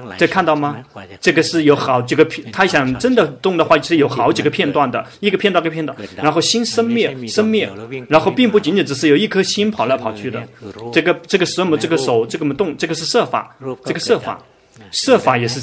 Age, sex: 30-49, male